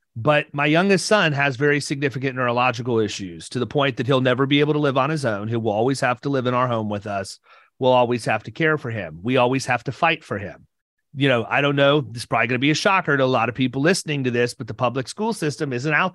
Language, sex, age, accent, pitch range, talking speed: English, male, 30-49, American, 120-150 Hz, 280 wpm